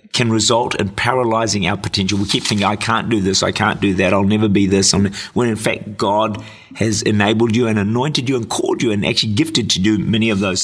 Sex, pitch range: male, 105-135 Hz